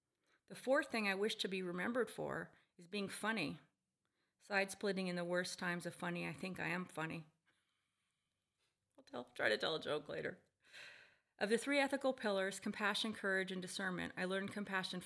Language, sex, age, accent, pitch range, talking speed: English, female, 30-49, American, 170-195 Hz, 170 wpm